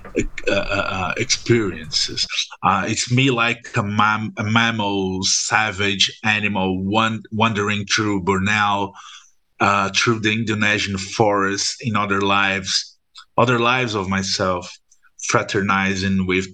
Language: English